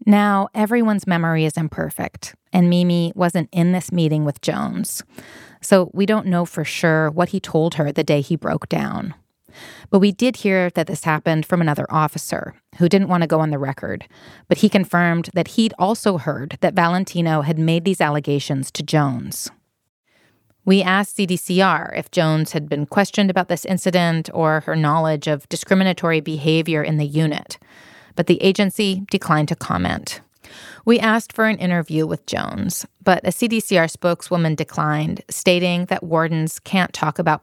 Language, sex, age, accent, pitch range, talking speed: English, female, 30-49, American, 155-190 Hz, 170 wpm